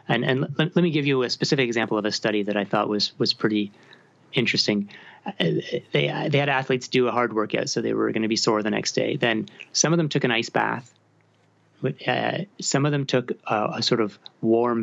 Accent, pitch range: American, 110-135 Hz